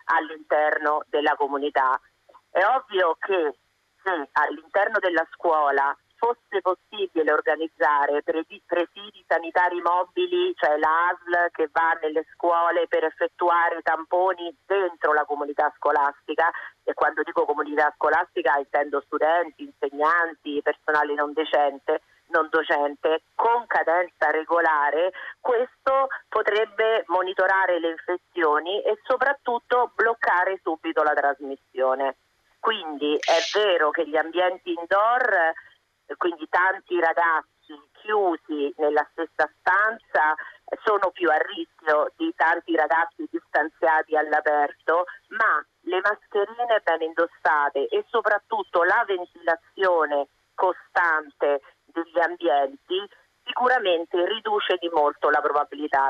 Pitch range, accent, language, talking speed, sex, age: 150-190 Hz, native, Italian, 105 wpm, female, 40-59